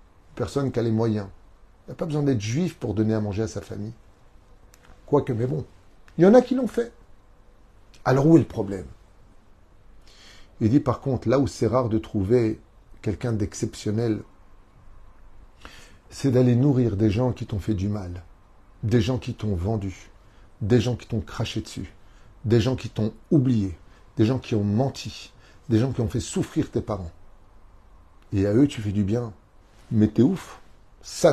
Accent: French